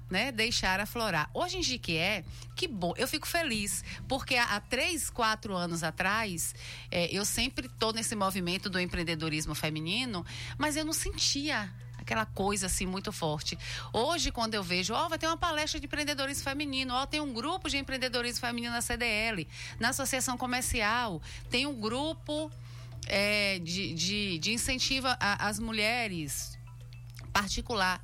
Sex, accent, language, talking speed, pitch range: female, Brazilian, Portuguese, 155 wpm, 165-240 Hz